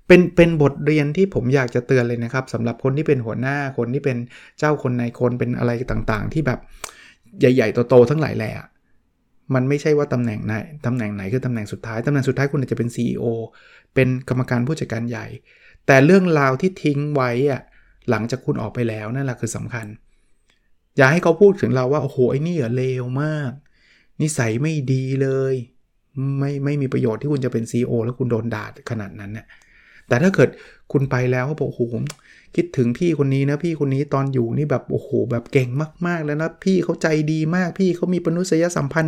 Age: 20-39